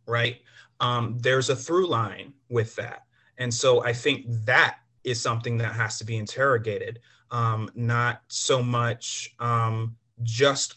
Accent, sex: American, male